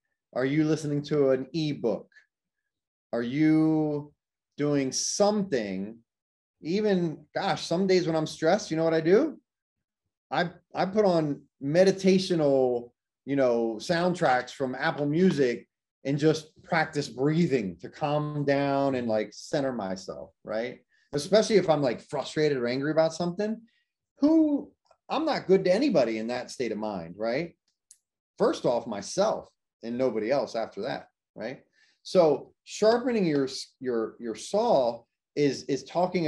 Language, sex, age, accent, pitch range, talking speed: English, male, 30-49, American, 130-175 Hz, 140 wpm